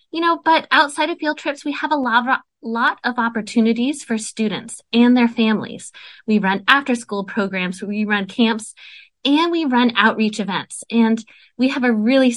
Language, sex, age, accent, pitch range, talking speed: English, female, 20-39, American, 210-270 Hz, 175 wpm